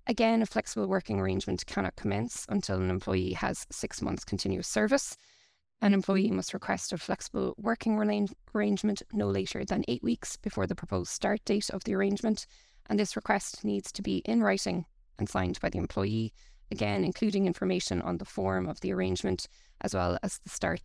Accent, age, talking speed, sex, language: Irish, 20-39, 180 wpm, female, English